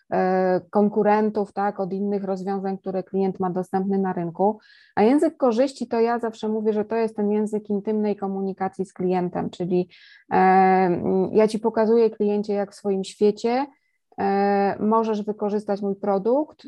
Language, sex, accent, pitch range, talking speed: Polish, female, native, 190-220 Hz, 145 wpm